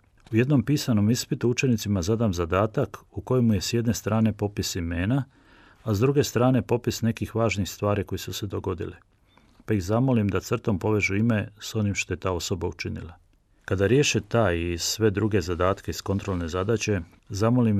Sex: male